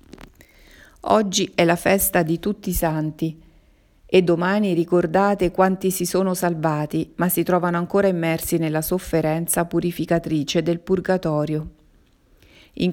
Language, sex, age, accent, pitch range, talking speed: Italian, female, 40-59, native, 160-185 Hz, 120 wpm